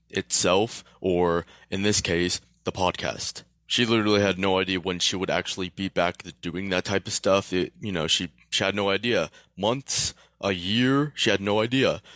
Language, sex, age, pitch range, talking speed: English, male, 20-39, 90-100 Hz, 190 wpm